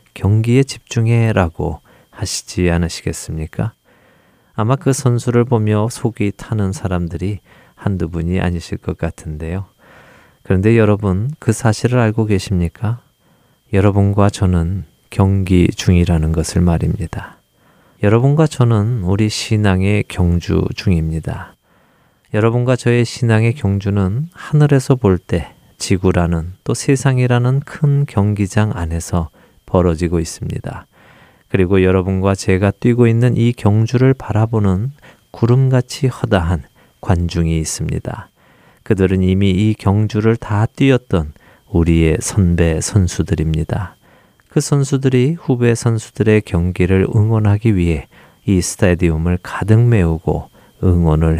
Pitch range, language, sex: 90-120 Hz, Korean, male